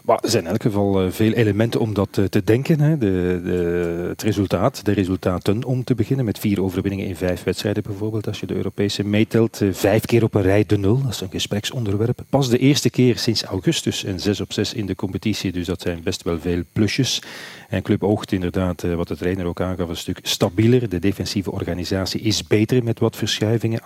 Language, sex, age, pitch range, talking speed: Dutch, male, 40-59, 95-120 Hz, 215 wpm